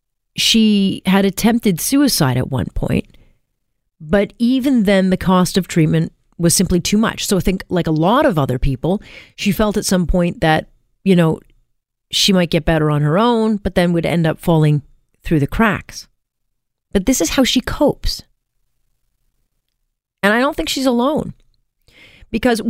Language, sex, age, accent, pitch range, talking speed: English, female, 40-59, American, 155-215 Hz, 170 wpm